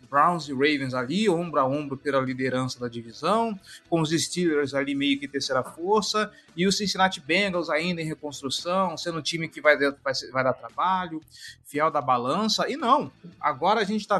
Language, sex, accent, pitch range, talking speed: Portuguese, male, Brazilian, 145-210 Hz, 190 wpm